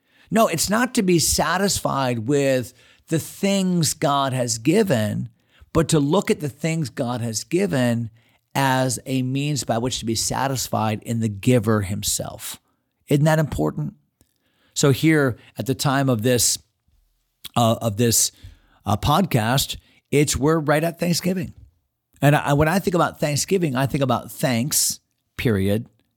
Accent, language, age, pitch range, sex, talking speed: American, English, 40-59, 115-150 Hz, male, 150 wpm